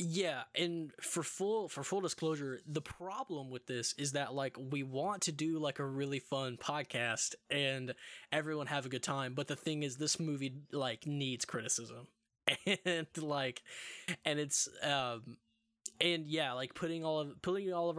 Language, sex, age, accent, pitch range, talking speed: English, male, 10-29, American, 125-155 Hz, 175 wpm